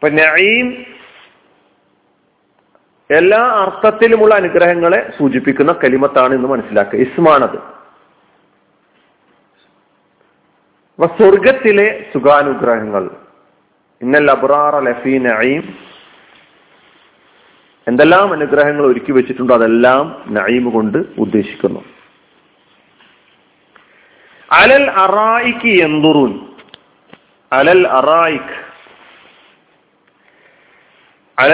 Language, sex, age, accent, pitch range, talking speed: Malayalam, male, 40-59, native, 130-180 Hz, 30 wpm